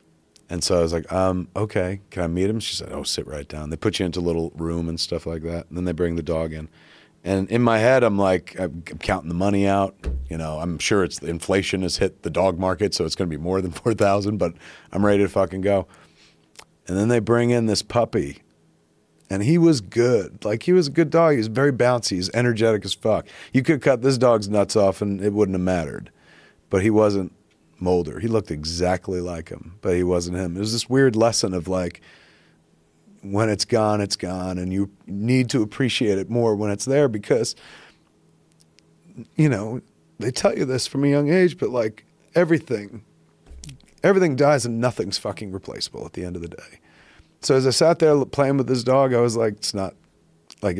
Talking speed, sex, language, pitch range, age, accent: 220 wpm, male, English, 85-115 Hz, 30-49, American